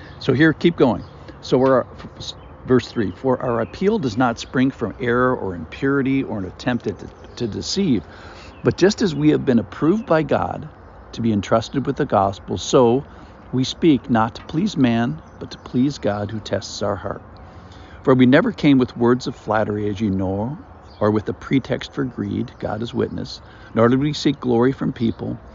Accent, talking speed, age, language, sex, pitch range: American, 195 wpm, 60-79, English, male, 100-130 Hz